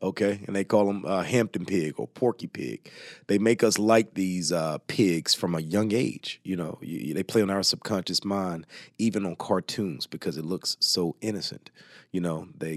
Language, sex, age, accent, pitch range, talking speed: English, male, 30-49, American, 85-105 Hz, 195 wpm